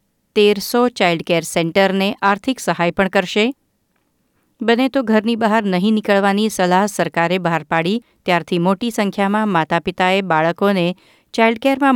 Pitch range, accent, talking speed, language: 175-220 Hz, native, 120 wpm, Gujarati